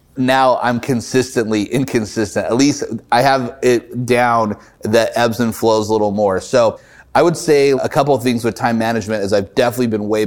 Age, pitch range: 30-49, 105-125 Hz